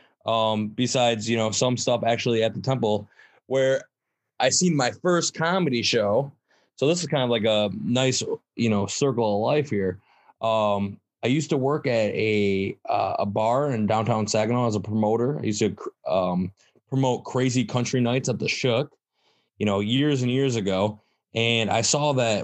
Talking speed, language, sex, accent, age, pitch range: 180 wpm, English, male, American, 20-39, 110-130 Hz